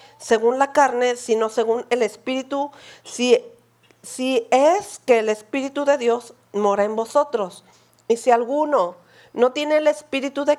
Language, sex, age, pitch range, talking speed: Spanish, female, 40-59, 220-270 Hz, 145 wpm